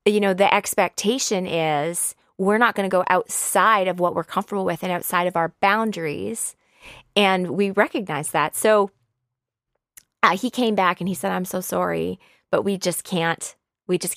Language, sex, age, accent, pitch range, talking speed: English, female, 20-39, American, 175-205 Hz, 180 wpm